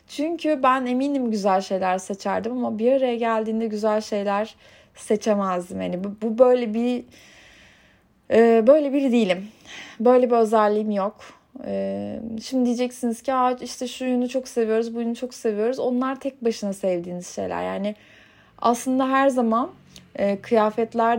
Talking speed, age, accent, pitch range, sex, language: 140 wpm, 30-49, native, 195-250 Hz, female, Turkish